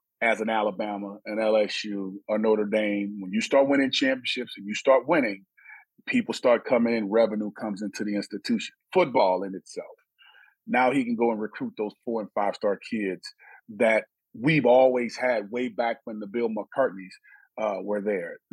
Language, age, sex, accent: English, 30-49, male, American